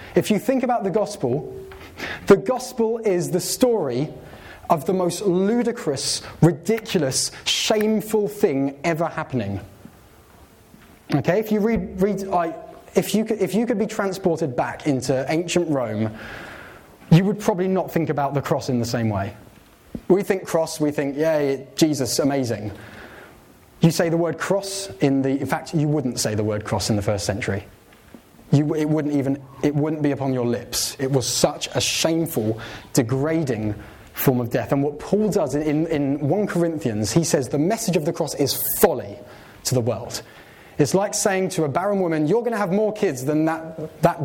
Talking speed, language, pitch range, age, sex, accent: 180 wpm, English, 140-195 Hz, 20-39, male, British